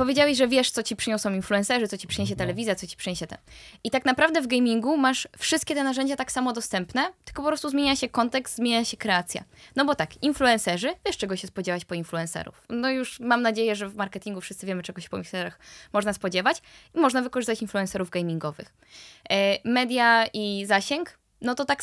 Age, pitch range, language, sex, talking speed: 10-29, 190-245 Hz, Polish, female, 200 wpm